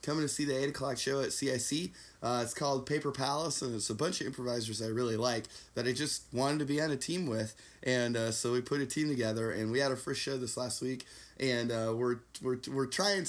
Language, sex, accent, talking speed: English, male, American, 255 wpm